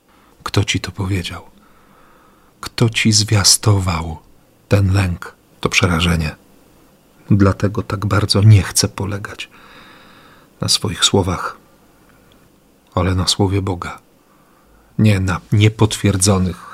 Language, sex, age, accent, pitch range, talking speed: Polish, male, 40-59, native, 95-115 Hz, 95 wpm